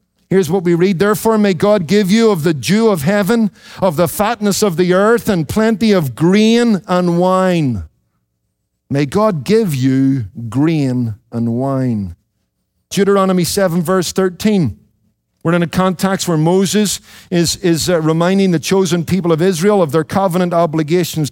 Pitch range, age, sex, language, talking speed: 160-205 Hz, 50-69, male, English, 160 wpm